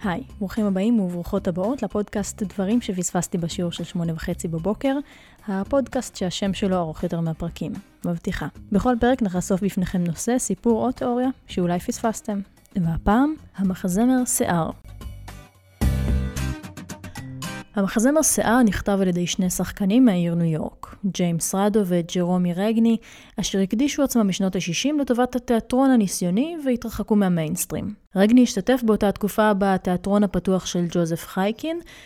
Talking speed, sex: 125 wpm, female